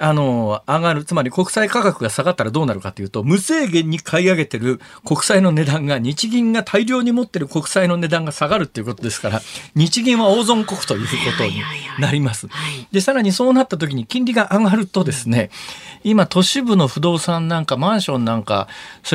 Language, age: Japanese, 40-59